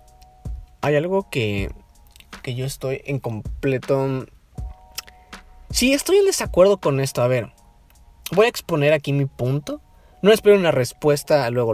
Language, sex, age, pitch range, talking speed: Spanish, male, 30-49, 110-180 Hz, 140 wpm